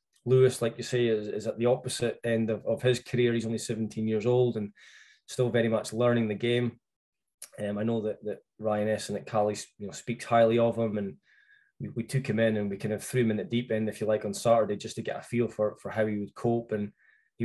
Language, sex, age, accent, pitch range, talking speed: English, male, 20-39, British, 105-120 Hz, 260 wpm